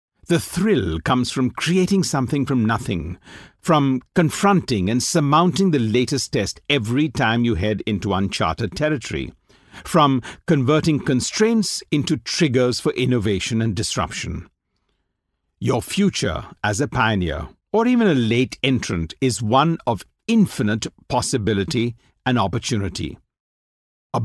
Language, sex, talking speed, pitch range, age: English, male, 120 wpm, 100-150 Hz, 50-69